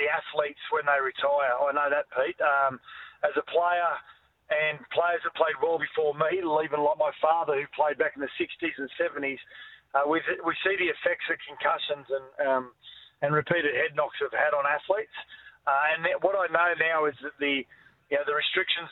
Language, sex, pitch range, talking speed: English, male, 150-190 Hz, 205 wpm